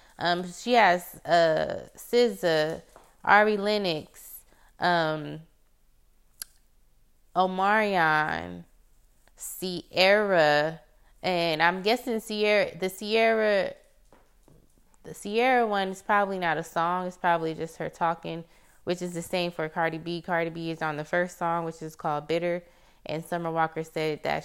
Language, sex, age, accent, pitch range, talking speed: English, female, 20-39, American, 160-195 Hz, 130 wpm